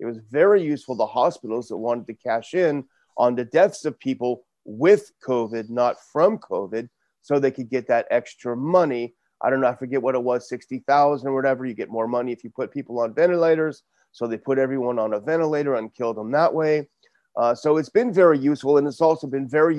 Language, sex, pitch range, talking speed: English, male, 125-155 Hz, 220 wpm